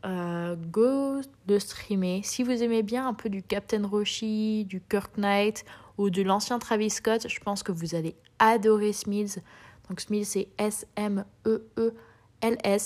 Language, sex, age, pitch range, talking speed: French, female, 20-39, 195-220 Hz, 145 wpm